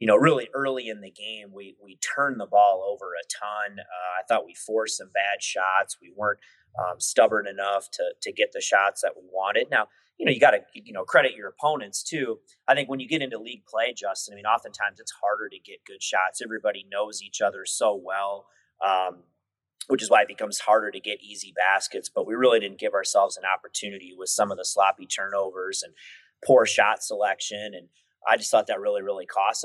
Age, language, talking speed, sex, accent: 30-49, English, 220 wpm, male, American